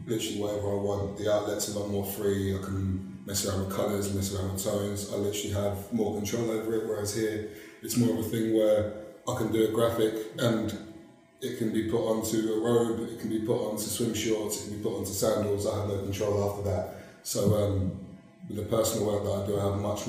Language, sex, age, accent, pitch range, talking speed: English, male, 20-39, British, 100-115 Hz, 240 wpm